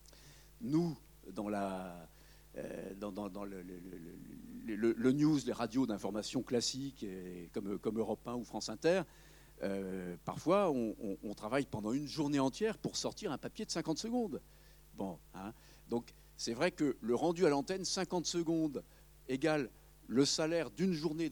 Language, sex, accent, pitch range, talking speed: French, male, French, 115-180 Hz, 160 wpm